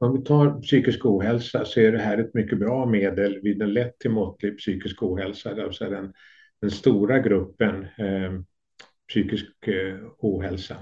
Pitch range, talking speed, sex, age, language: 100-115 Hz, 165 wpm, male, 50-69, Swedish